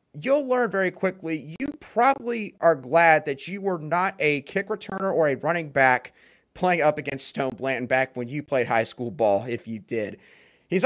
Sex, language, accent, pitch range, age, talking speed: male, English, American, 135-190 Hz, 30-49, 195 wpm